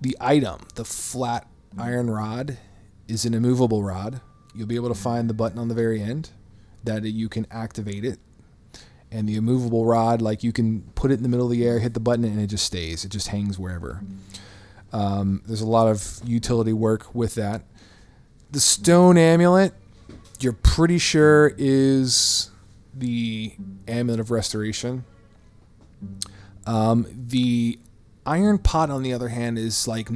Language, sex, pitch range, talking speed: English, male, 100-120 Hz, 165 wpm